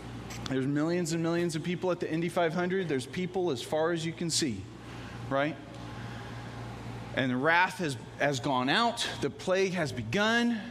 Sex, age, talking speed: male, 30-49, 170 wpm